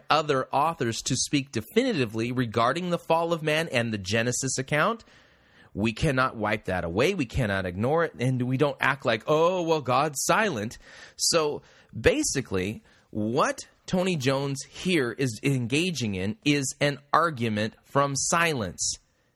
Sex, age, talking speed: male, 30-49, 145 wpm